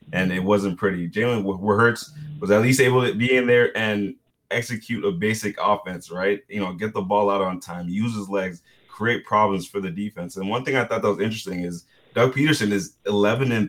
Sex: male